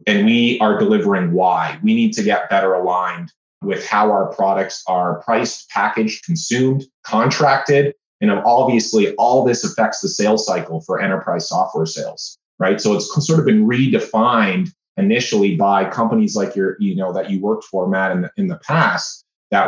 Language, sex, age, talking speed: English, male, 30-49, 175 wpm